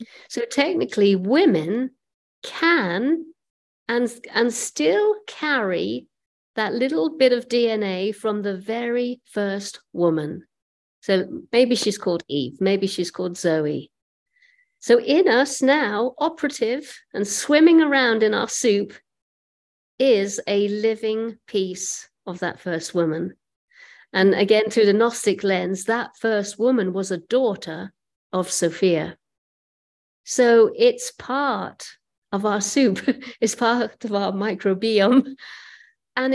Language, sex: English, female